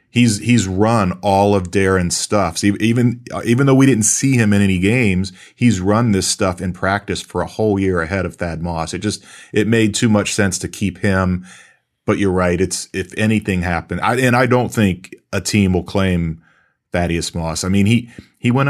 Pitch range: 90-105 Hz